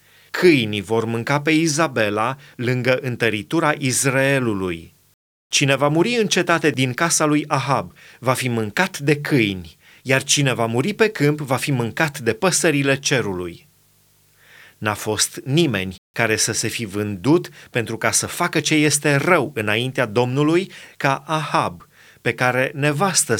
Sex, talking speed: male, 145 wpm